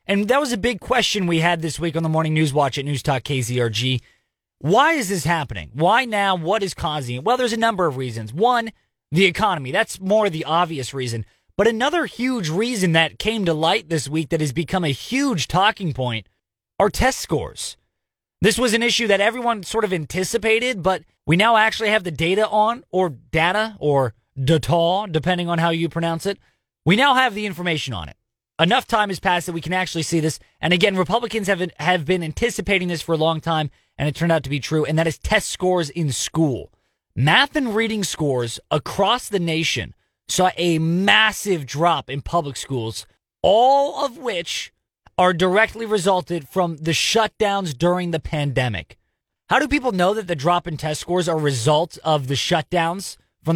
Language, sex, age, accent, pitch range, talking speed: English, male, 20-39, American, 155-210 Hz, 195 wpm